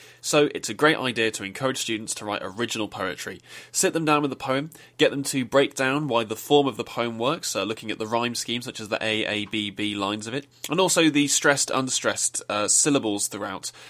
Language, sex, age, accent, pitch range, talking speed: English, male, 20-39, British, 105-140 Hz, 235 wpm